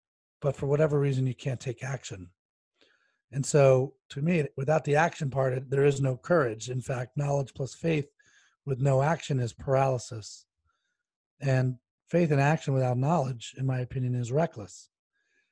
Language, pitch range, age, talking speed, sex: English, 120-150 Hz, 30-49, 160 wpm, male